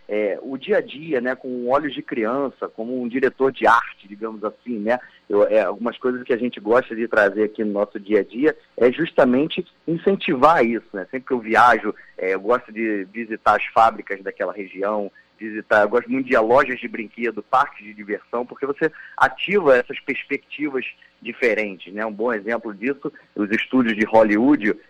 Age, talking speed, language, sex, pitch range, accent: 30-49, 185 wpm, Portuguese, male, 110-145 Hz, Brazilian